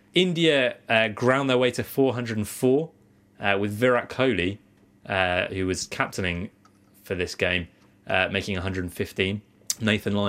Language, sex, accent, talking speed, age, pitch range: English, male, British, 135 wpm, 20-39, 100-125 Hz